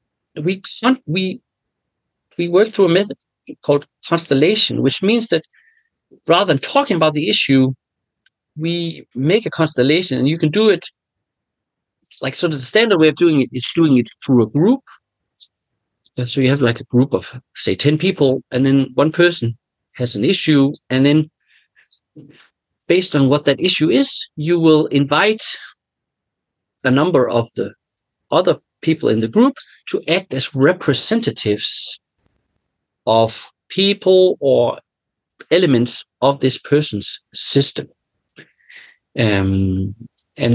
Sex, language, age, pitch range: male, Finnish, 50-69, 120-175 Hz